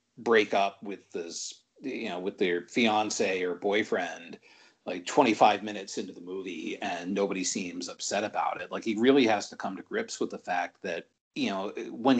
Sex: male